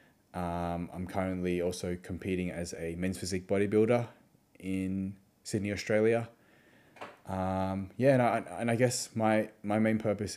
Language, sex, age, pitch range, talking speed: English, male, 20-39, 85-100 Hz, 140 wpm